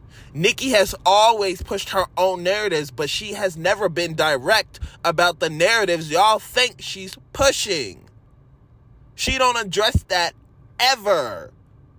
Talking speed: 125 wpm